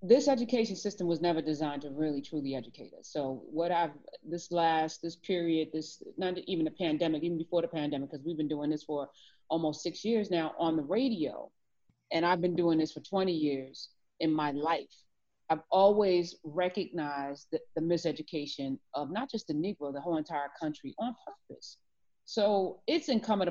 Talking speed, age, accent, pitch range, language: 180 wpm, 30-49, American, 160-225 Hz, English